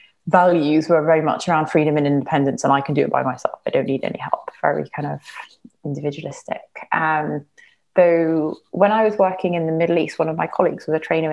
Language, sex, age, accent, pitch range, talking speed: English, female, 30-49, British, 150-175 Hz, 215 wpm